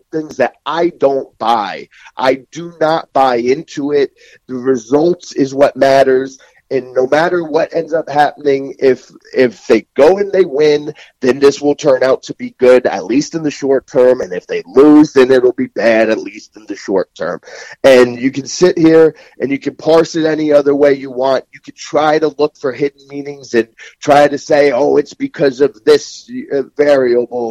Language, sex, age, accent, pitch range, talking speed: English, male, 30-49, American, 130-155 Hz, 200 wpm